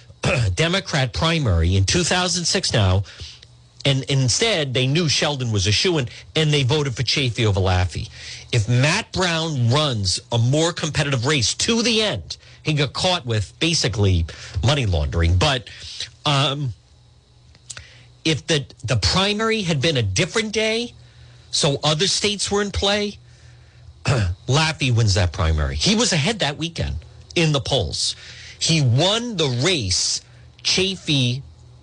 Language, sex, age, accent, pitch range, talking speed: English, male, 50-69, American, 105-155 Hz, 135 wpm